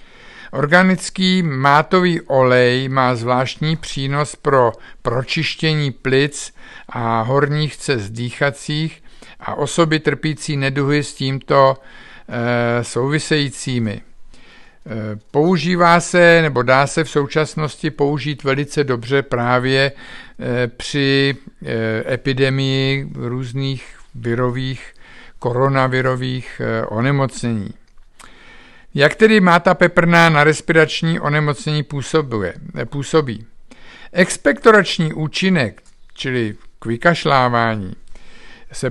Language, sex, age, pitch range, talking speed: Czech, male, 50-69, 130-155 Hz, 80 wpm